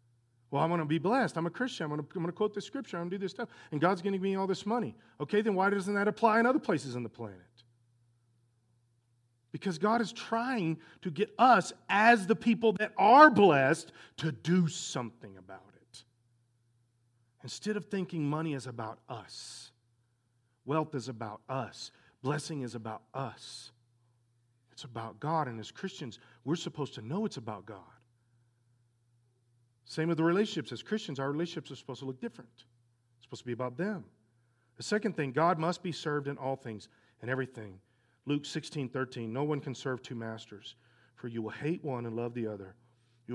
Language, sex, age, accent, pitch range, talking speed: English, male, 40-59, American, 120-160 Hz, 190 wpm